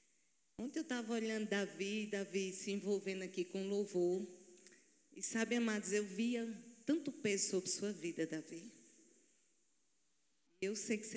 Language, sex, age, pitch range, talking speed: Portuguese, female, 40-59, 180-225 Hz, 140 wpm